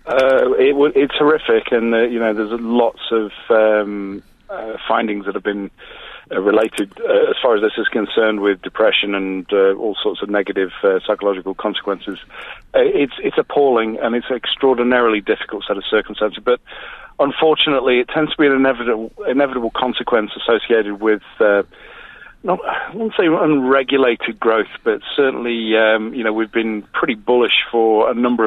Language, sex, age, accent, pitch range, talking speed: English, male, 40-59, British, 105-135 Hz, 175 wpm